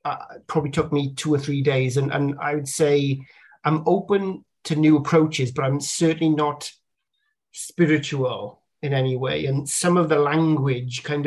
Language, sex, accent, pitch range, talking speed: English, male, British, 135-155 Hz, 170 wpm